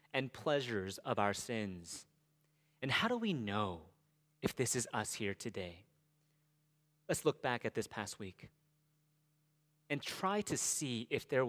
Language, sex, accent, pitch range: English, male, American, 115-160 Hz